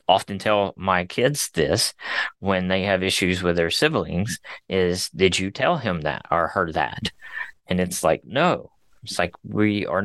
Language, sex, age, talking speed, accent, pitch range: English, male, 30-49, 175 wpm, American, 90-105 Hz